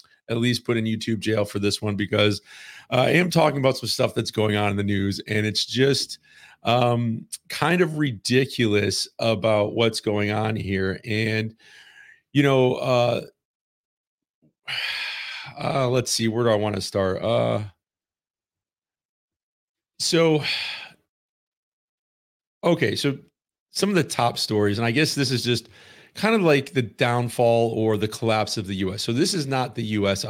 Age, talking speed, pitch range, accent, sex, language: 40-59, 155 wpm, 100-120 Hz, American, male, English